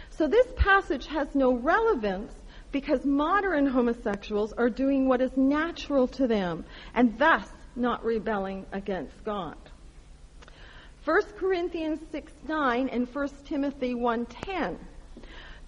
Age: 40-59